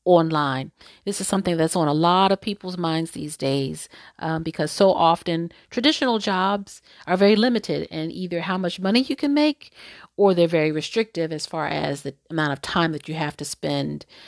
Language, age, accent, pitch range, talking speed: English, 40-59, American, 155-200 Hz, 195 wpm